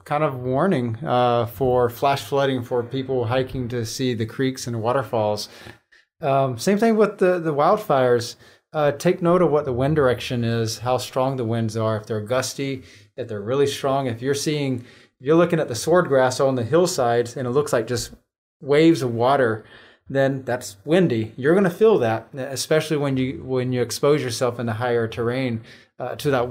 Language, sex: English, male